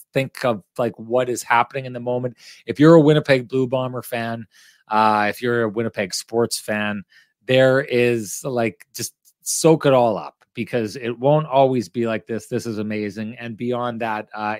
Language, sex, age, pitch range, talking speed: English, male, 30-49, 110-135 Hz, 185 wpm